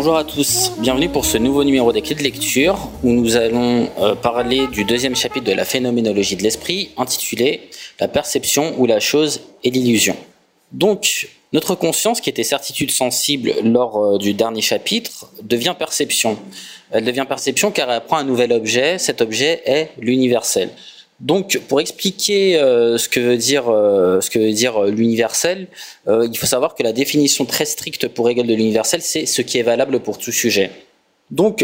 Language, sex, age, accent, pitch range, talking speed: French, male, 20-39, French, 115-150 Hz, 180 wpm